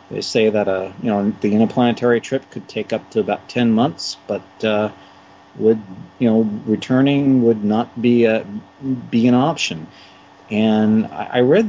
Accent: American